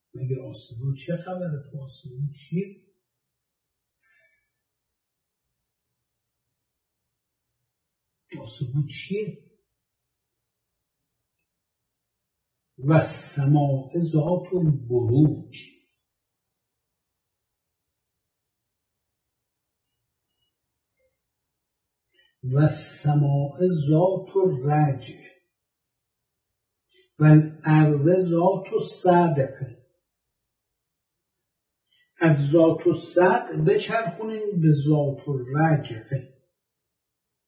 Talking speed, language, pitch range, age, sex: 40 wpm, Persian, 130-175 Hz, 60-79, male